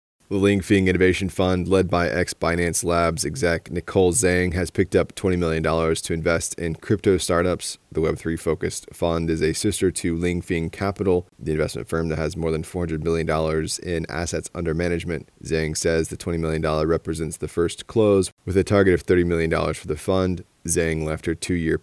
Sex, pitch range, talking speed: male, 80-95 Hz, 185 wpm